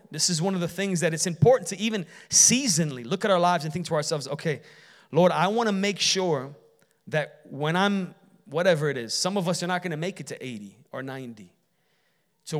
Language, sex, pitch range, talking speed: English, male, 130-175 Hz, 225 wpm